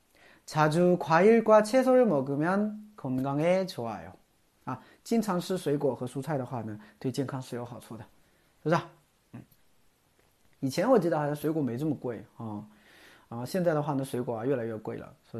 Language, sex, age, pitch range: Chinese, male, 30-49, 120-200 Hz